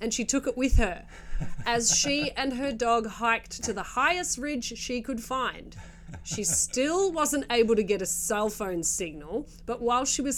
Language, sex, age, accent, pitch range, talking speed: English, female, 30-49, Australian, 185-245 Hz, 190 wpm